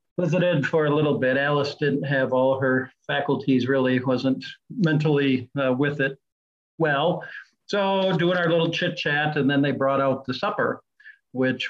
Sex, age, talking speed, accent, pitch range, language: male, 50-69, 165 wpm, American, 130-160 Hz, English